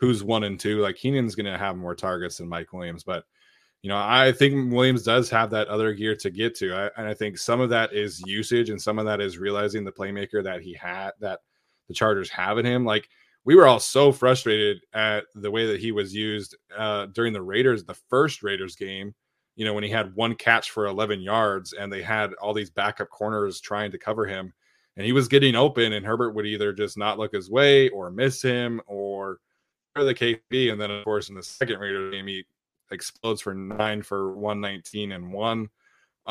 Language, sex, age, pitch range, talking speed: English, male, 20-39, 100-115 Hz, 220 wpm